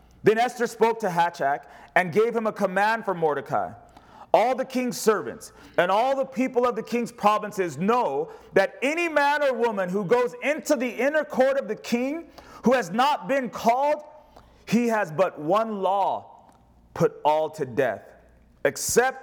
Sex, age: male, 30-49